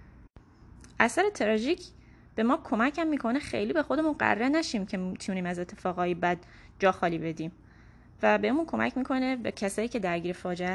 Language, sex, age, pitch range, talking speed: Persian, female, 10-29, 185-245 Hz, 155 wpm